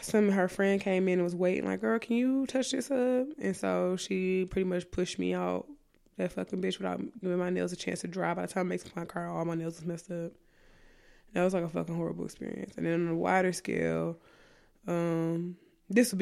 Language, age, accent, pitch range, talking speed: English, 20-39, American, 170-195 Hz, 240 wpm